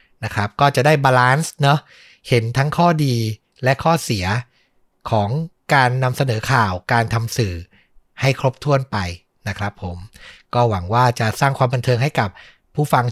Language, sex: Thai, male